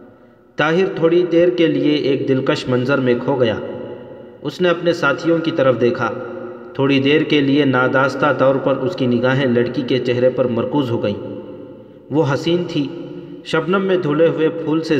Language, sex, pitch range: Urdu, male, 125-150 Hz